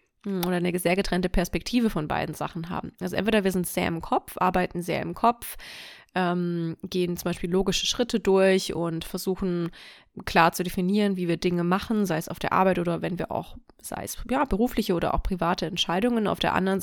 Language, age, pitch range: German, 20-39, 175-200 Hz